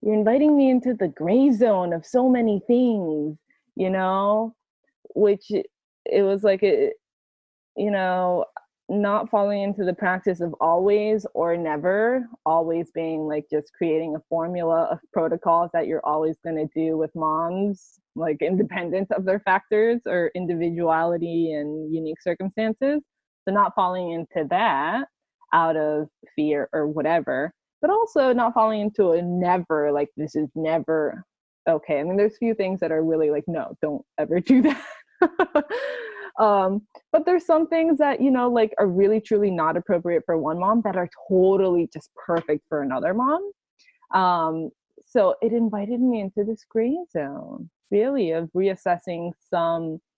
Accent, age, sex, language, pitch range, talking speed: American, 20-39, female, English, 165-230 Hz, 155 wpm